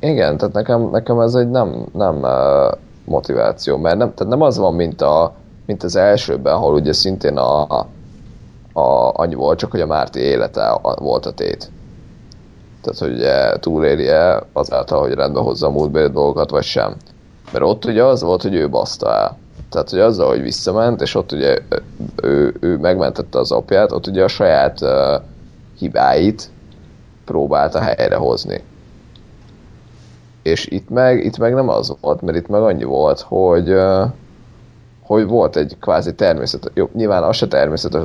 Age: 30-49